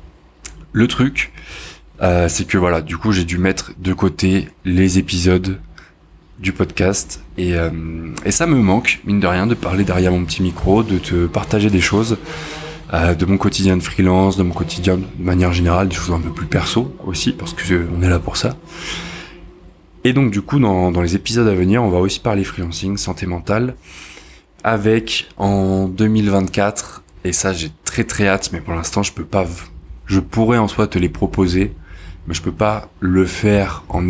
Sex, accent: male, French